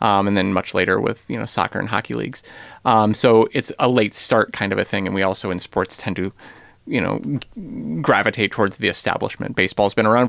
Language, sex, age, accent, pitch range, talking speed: English, male, 30-49, American, 105-130 Hz, 220 wpm